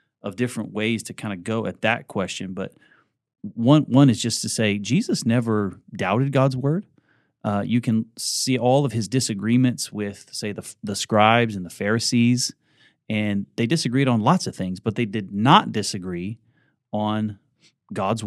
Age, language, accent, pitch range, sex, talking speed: 30-49, English, American, 105-130 Hz, male, 170 wpm